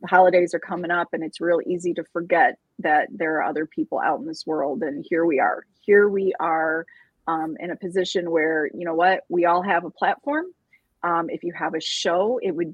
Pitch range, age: 165-210 Hz, 30-49